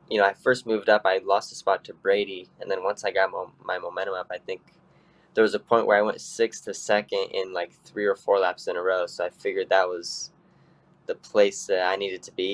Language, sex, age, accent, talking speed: English, male, 10-29, American, 260 wpm